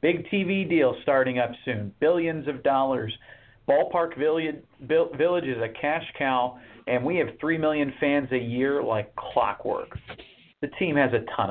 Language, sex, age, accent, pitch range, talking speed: English, male, 40-59, American, 125-155 Hz, 155 wpm